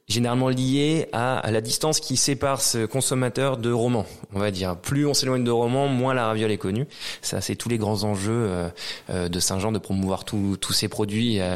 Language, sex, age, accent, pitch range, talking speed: French, male, 20-39, French, 100-120 Hz, 190 wpm